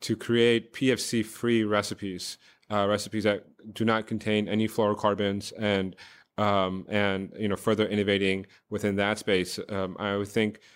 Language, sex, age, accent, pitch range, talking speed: English, male, 30-49, American, 100-115 Hz, 145 wpm